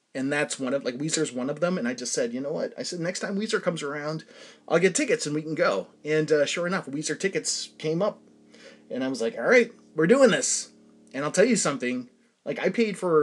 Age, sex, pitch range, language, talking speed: 30-49, male, 140-230 Hz, English, 255 wpm